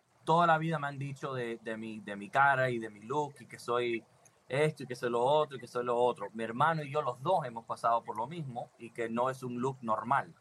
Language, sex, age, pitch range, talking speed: English, male, 30-49, 120-155 Hz, 275 wpm